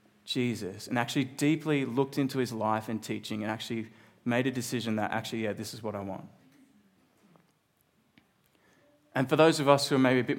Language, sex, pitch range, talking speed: English, male, 115-150 Hz, 190 wpm